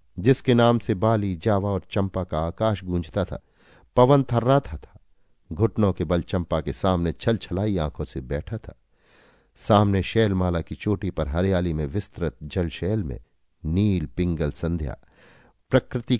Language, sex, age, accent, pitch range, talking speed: Hindi, male, 50-69, native, 85-105 Hz, 150 wpm